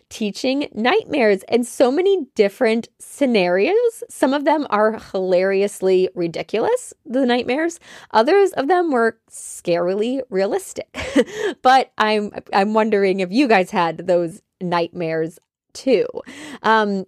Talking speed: 115 wpm